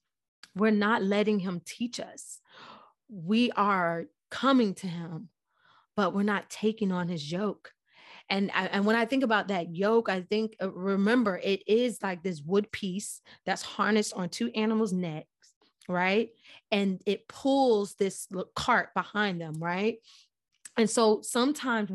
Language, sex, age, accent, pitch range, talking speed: English, female, 20-39, American, 195-240 Hz, 150 wpm